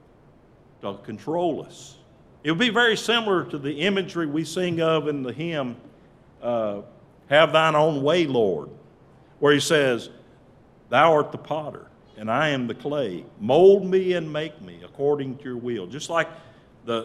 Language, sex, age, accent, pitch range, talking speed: English, male, 50-69, American, 125-175 Hz, 165 wpm